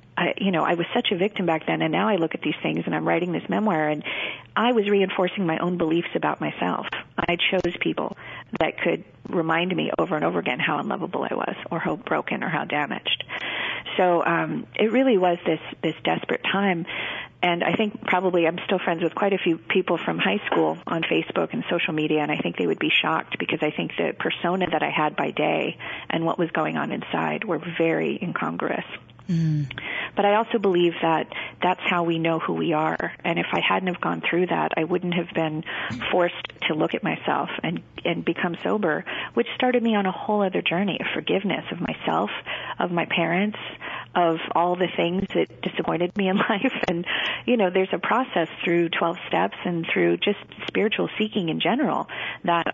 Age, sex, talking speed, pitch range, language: 40-59, female, 205 wpm, 165-195 Hz, English